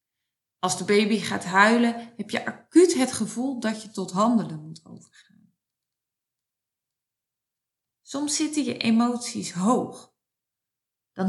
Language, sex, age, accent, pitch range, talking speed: Dutch, female, 20-39, Dutch, 185-245 Hz, 115 wpm